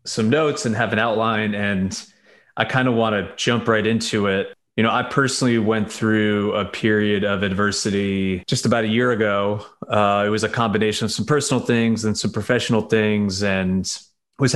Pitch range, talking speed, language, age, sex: 100-115 Hz, 190 wpm, English, 30-49, male